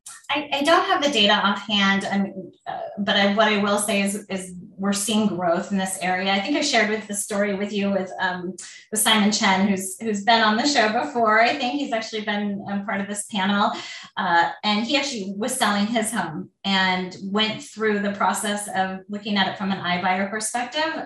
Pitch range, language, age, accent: 190-220 Hz, English, 20-39, American